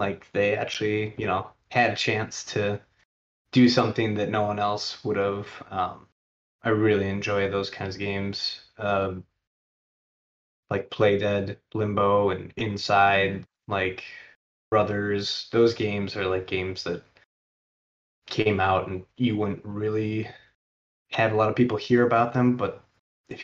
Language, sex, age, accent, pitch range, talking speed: English, male, 20-39, American, 95-110 Hz, 145 wpm